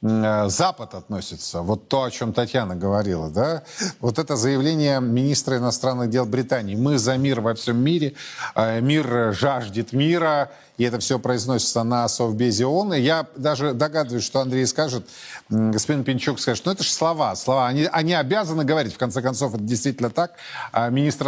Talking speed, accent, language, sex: 165 wpm, native, Russian, male